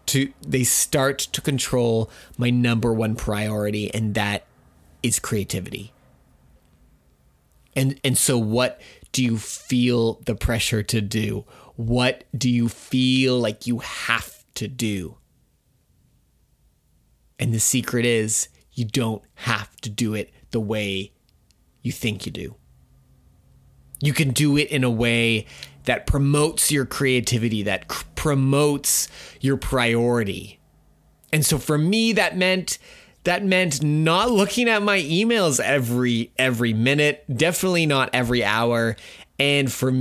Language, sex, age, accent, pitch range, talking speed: English, male, 30-49, American, 115-150 Hz, 130 wpm